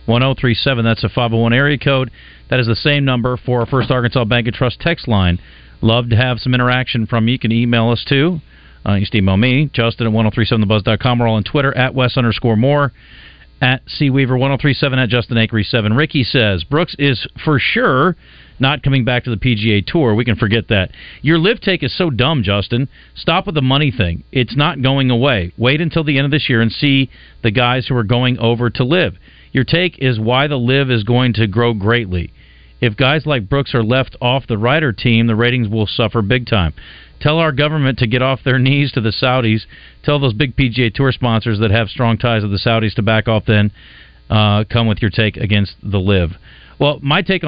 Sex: male